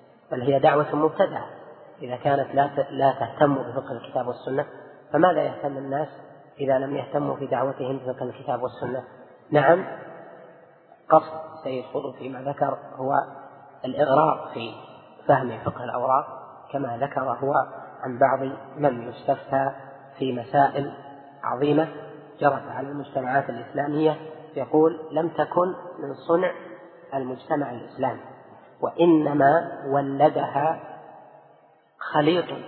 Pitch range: 135-155 Hz